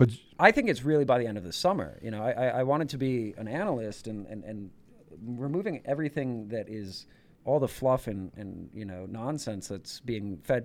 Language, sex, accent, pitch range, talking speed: English, male, American, 105-135 Hz, 210 wpm